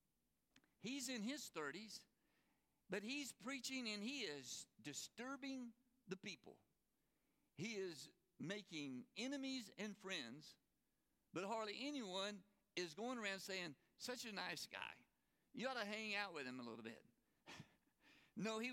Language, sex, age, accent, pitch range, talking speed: English, male, 60-79, American, 175-235 Hz, 135 wpm